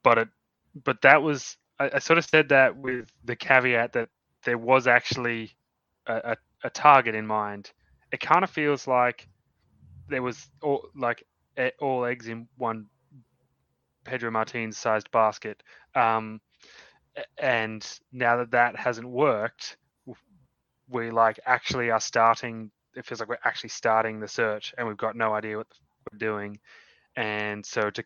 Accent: Australian